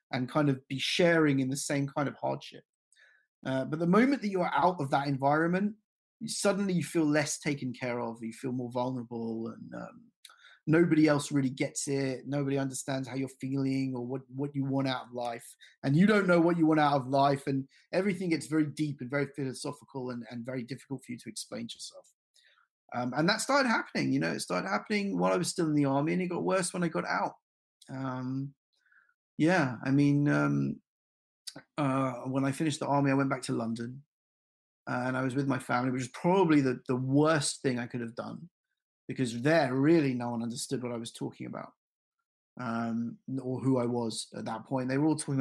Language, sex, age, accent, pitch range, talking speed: English, male, 30-49, British, 125-155 Hz, 215 wpm